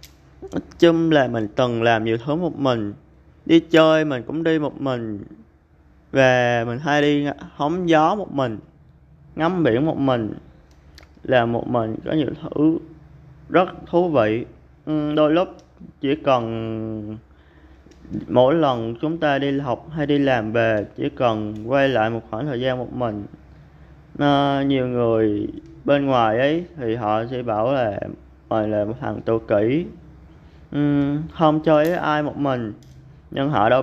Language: Vietnamese